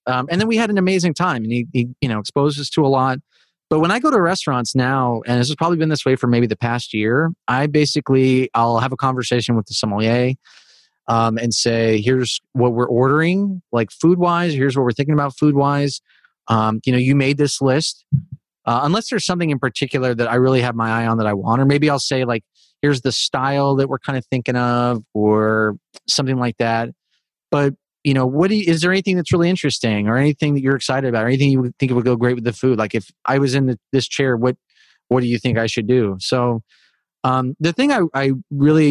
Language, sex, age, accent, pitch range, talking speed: English, male, 30-49, American, 120-145 Hz, 240 wpm